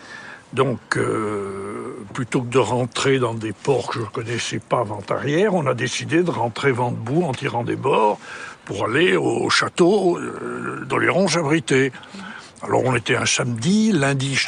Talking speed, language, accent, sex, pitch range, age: 175 wpm, French, French, male, 125-170 Hz, 60-79